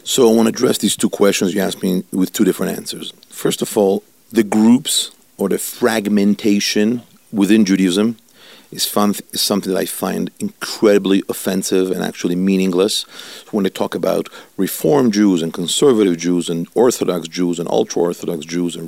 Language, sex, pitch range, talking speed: English, male, 90-105 Hz, 170 wpm